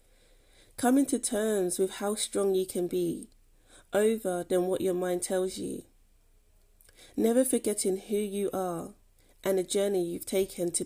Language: English